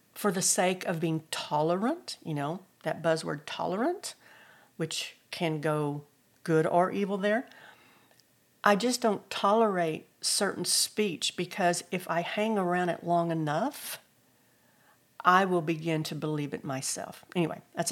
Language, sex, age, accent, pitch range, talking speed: English, female, 50-69, American, 160-205 Hz, 135 wpm